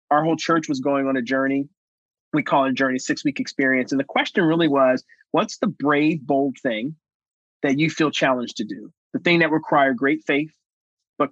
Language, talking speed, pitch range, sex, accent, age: English, 205 wpm, 130-155 Hz, male, American, 30-49